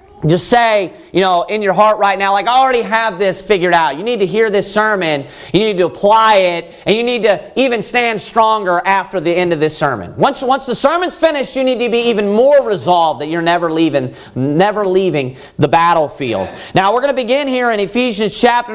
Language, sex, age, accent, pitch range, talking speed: English, male, 40-59, American, 190-250 Hz, 220 wpm